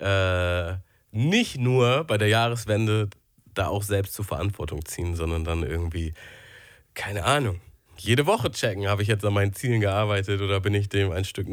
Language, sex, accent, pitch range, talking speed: German, male, German, 95-120 Hz, 170 wpm